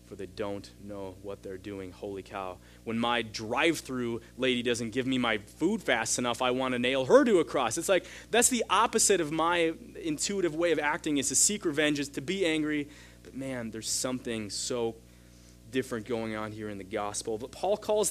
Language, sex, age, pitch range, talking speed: English, male, 30-49, 105-150 Hz, 205 wpm